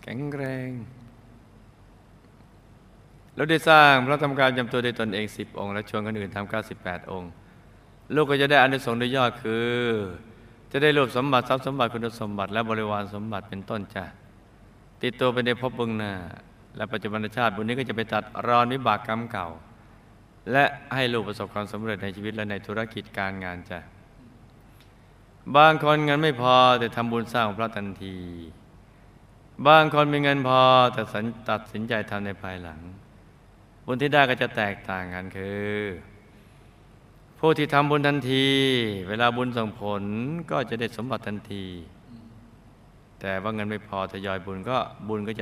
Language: Thai